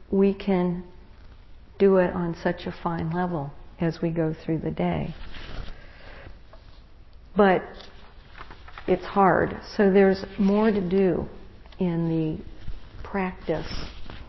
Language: English